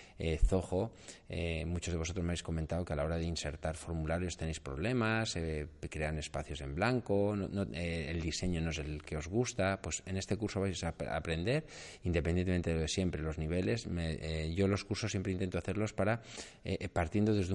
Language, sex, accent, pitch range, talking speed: Spanish, male, Spanish, 80-95 Hz, 200 wpm